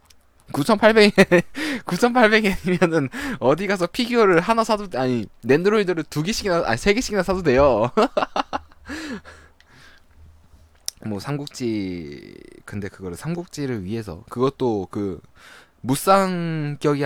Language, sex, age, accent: Korean, male, 20-39, native